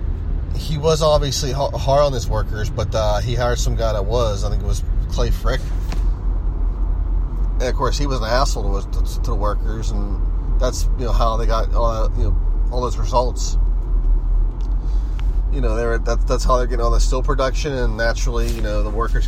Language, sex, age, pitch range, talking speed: English, male, 30-49, 75-115 Hz, 195 wpm